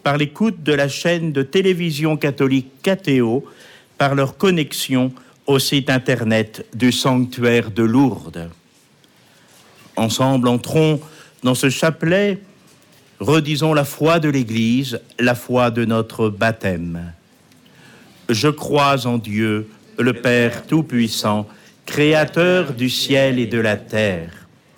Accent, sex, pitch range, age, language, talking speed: French, male, 105-140 Hz, 60-79, French, 115 wpm